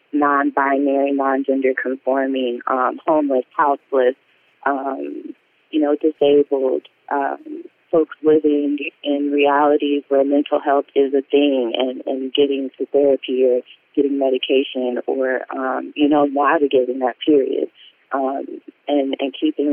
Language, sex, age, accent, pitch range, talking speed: English, female, 30-49, American, 130-145 Hz, 120 wpm